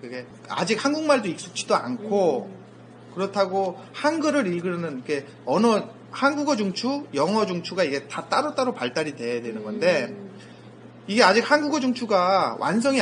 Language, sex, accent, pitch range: Korean, male, native, 150-255 Hz